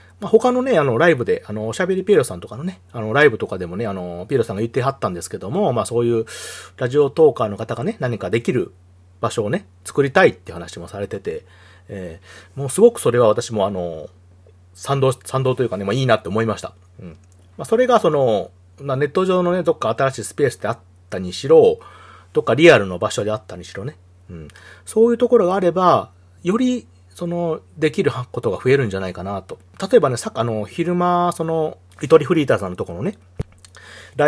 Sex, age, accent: male, 40-59, native